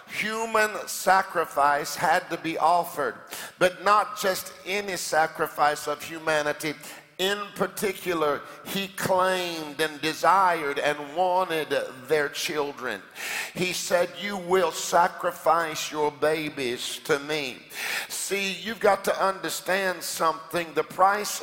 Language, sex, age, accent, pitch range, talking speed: English, male, 50-69, American, 155-185 Hz, 110 wpm